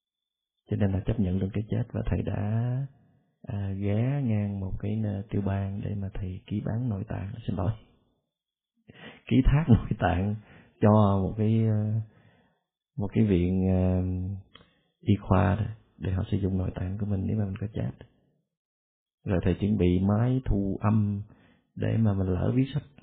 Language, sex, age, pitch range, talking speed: Vietnamese, male, 20-39, 95-115 Hz, 170 wpm